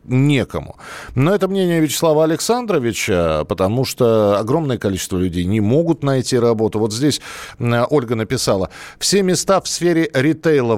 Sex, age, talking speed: male, 40-59, 135 wpm